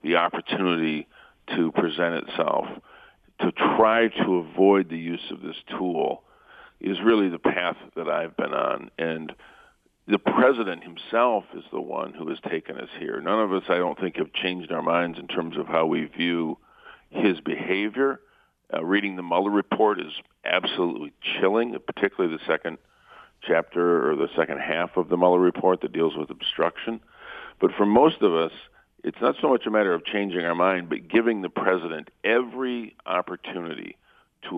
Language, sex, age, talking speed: English, male, 50-69, 170 wpm